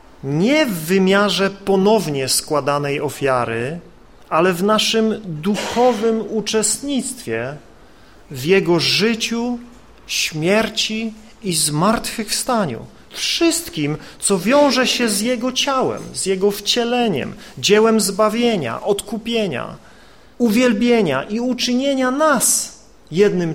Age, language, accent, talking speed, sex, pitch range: 40-59, Polish, native, 90 wpm, male, 155-235 Hz